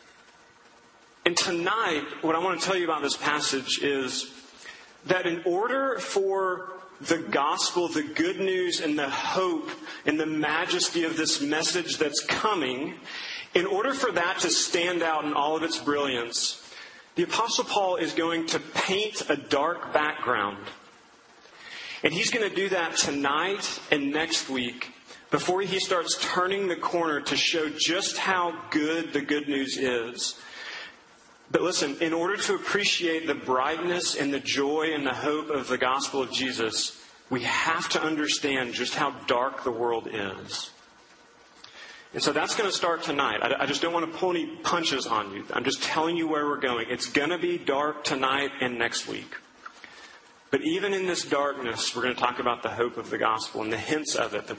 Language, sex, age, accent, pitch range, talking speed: English, male, 30-49, American, 135-180 Hz, 180 wpm